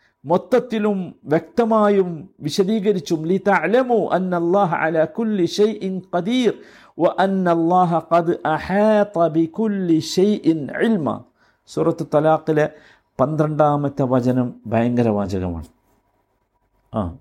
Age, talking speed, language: 50-69, 85 wpm, Malayalam